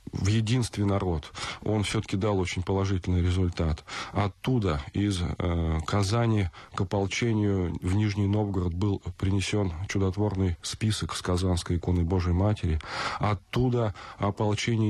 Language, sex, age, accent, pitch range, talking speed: Russian, male, 20-39, native, 90-105 Hz, 115 wpm